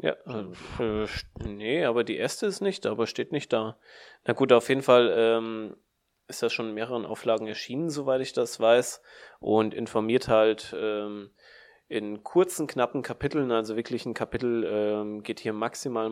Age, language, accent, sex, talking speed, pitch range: 30-49, German, German, male, 170 wpm, 110-130 Hz